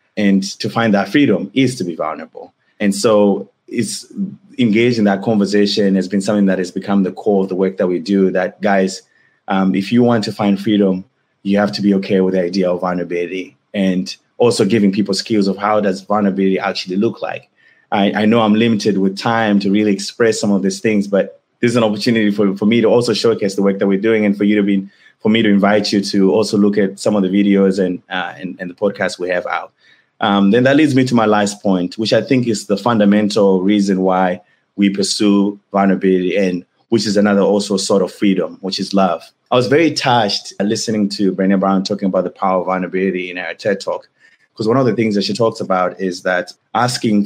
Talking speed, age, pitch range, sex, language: 225 wpm, 20-39, 95-105 Hz, male, English